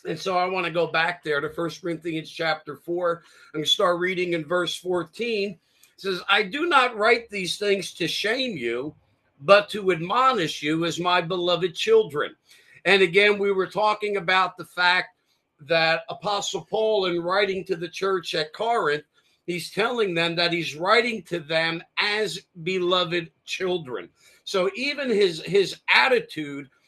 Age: 50-69